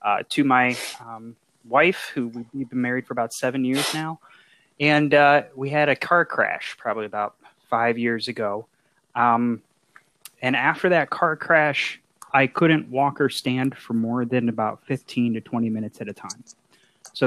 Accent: American